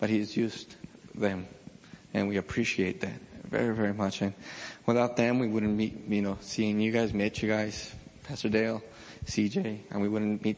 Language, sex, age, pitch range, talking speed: English, male, 20-39, 105-120 Hz, 170 wpm